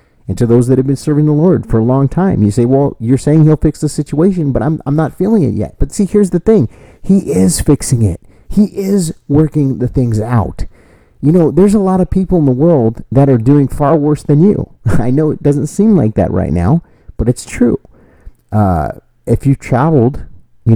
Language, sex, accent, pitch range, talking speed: English, male, American, 110-150 Hz, 225 wpm